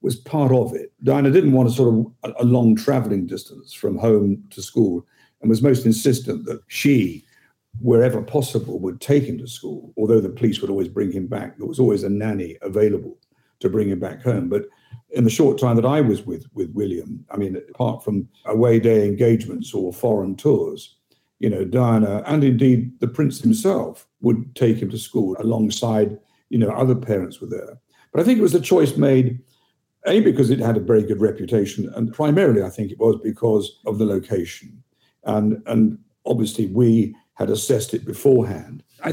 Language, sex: English, male